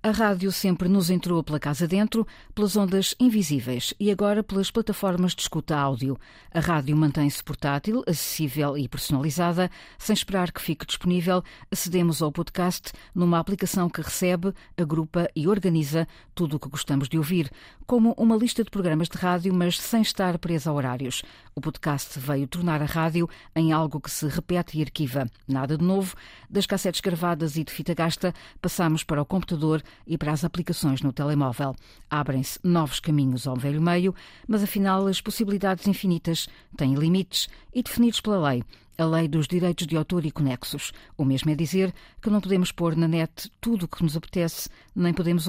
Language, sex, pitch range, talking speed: Portuguese, female, 145-185 Hz, 175 wpm